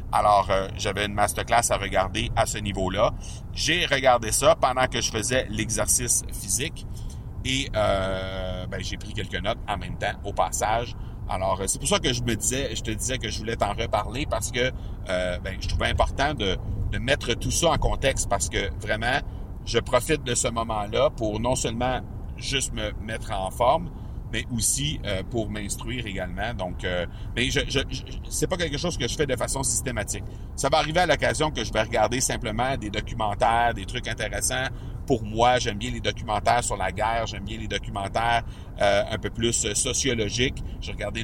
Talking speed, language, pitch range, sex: 195 wpm, French, 100-120 Hz, male